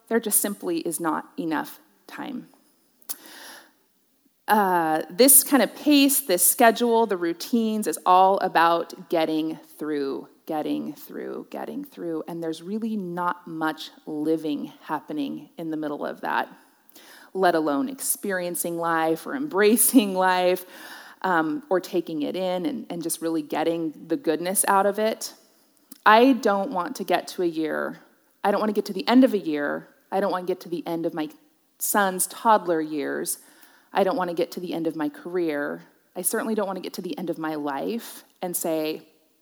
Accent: American